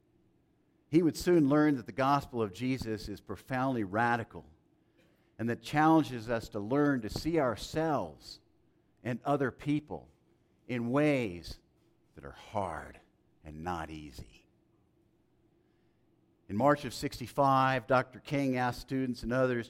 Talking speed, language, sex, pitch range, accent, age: 130 wpm, English, male, 95-130 Hz, American, 50-69